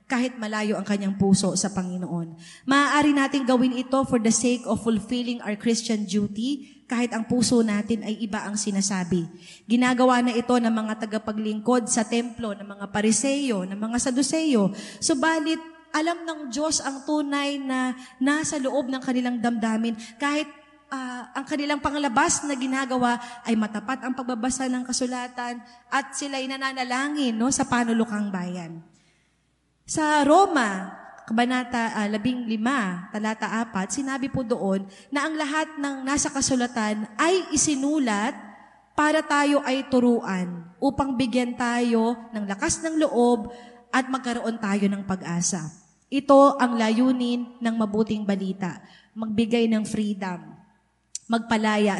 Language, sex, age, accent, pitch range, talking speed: Filipino, female, 20-39, native, 210-270 Hz, 135 wpm